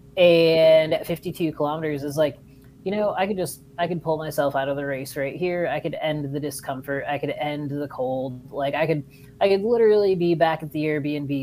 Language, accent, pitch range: English, American, 140-165 Hz